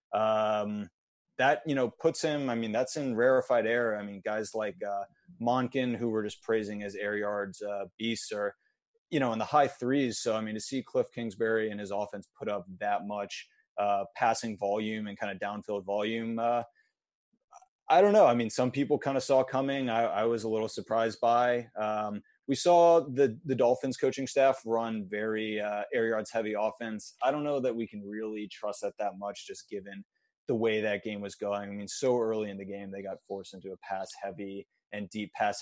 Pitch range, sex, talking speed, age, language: 100-125 Hz, male, 210 wpm, 20-39, English